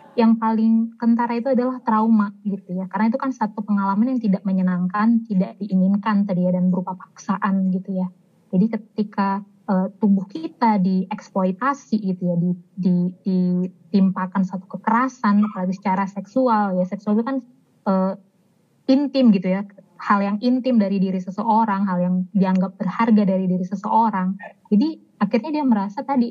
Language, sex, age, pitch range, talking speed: Indonesian, female, 20-39, 190-225 Hz, 155 wpm